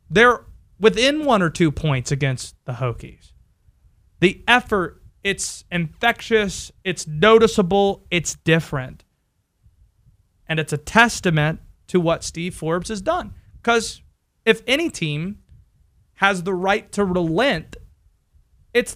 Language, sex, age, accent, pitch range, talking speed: English, male, 30-49, American, 160-225 Hz, 115 wpm